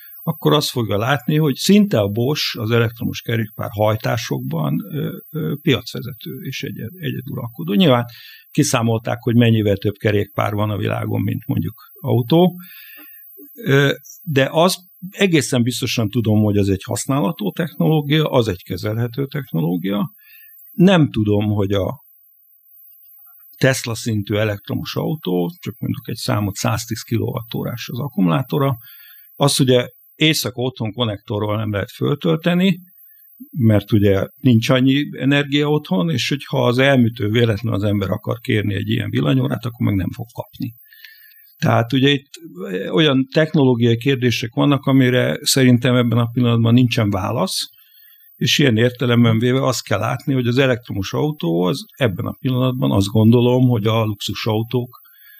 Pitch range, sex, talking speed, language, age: 110-150 Hz, male, 135 wpm, Hungarian, 60-79